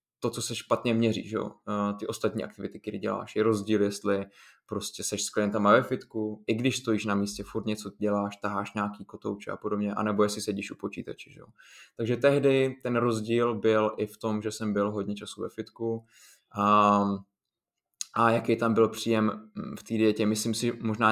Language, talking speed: Slovak, 180 wpm